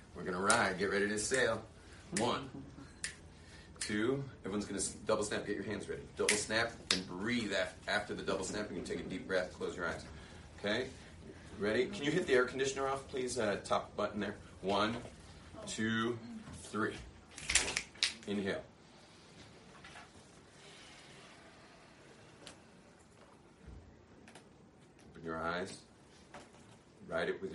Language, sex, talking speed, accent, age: English, male, 125 wpm, American, 40-59